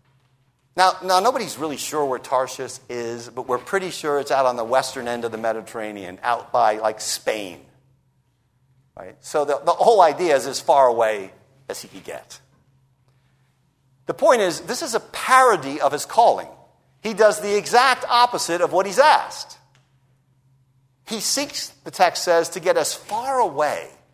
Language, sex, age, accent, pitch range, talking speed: English, male, 50-69, American, 130-195 Hz, 170 wpm